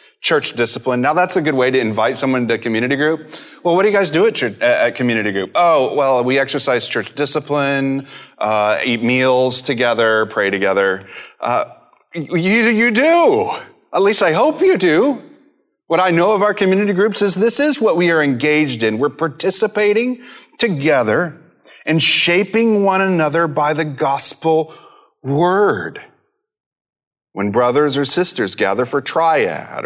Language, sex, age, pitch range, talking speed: English, male, 30-49, 130-185 Hz, 155 wpm